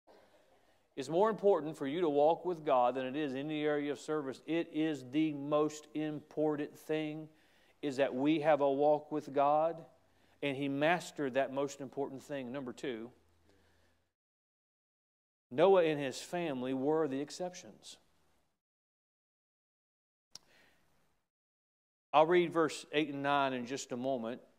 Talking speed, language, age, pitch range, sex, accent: 140 wpm, English, 40-59, 125-155 Hz, male, American